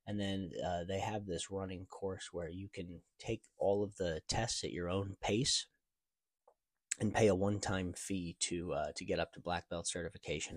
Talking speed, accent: 195 wpm, American